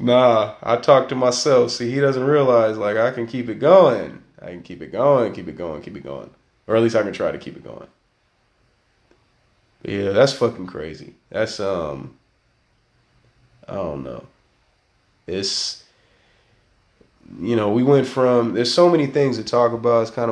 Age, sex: 20-39, male